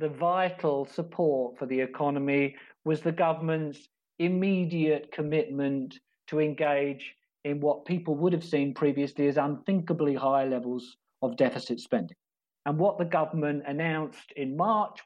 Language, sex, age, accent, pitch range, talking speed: English, male, 50-69, British, 140-180 Hz, 135 wpm